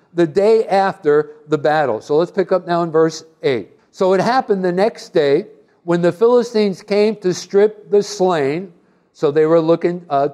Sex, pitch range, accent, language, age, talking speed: male, 160-200 Hz, American, English, 60-79, 185 wpm